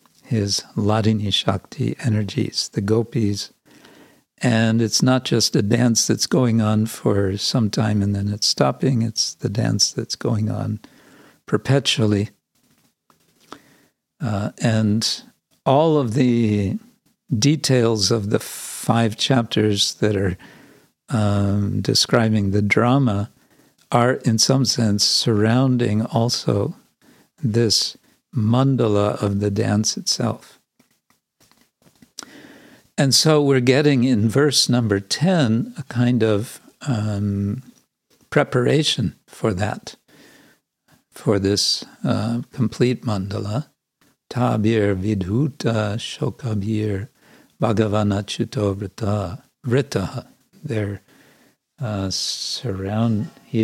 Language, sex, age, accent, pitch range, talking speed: English, male, 60-79, American, 105-125 Hz, 95 wpm